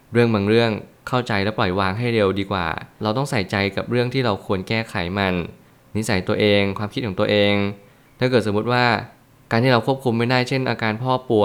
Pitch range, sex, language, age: 100-120 Hz, male, Thai, 20-39